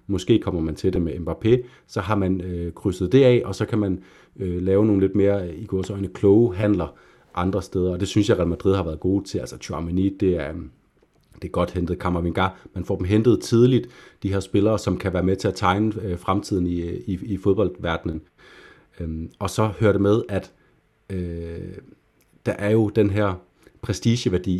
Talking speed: 200 wpm